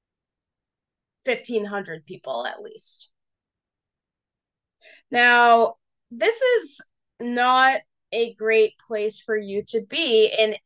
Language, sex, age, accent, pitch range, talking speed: English, female, 20-39, American, 210-260 Hz, 90 wpm